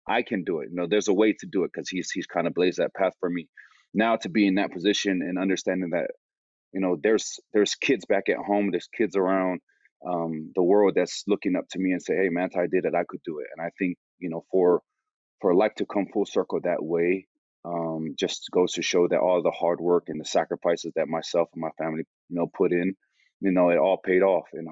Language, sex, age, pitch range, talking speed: English, male, 30-49, 85-105 Hz, 250 wpm